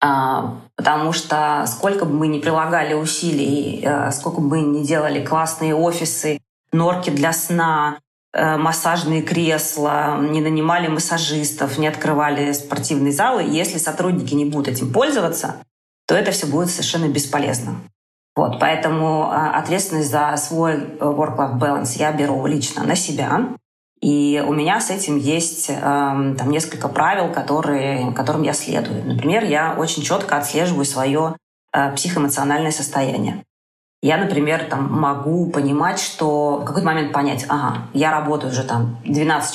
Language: Russian